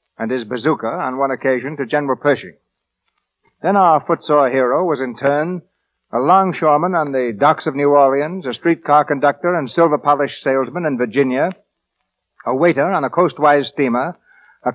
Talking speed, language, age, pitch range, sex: 165 wpm, English, 60-79, 130-160 Hz, male